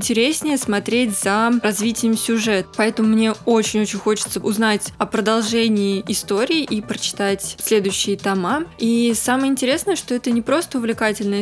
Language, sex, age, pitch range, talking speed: Russian, female, 20-39, 215-245 Hz, 130 wpm